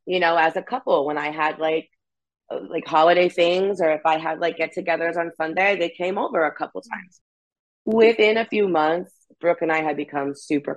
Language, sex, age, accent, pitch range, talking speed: English, female, 30-49, American, 155-185 Hz, 200 wpm